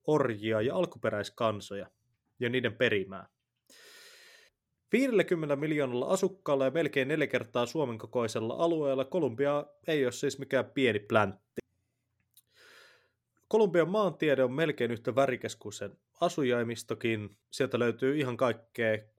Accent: native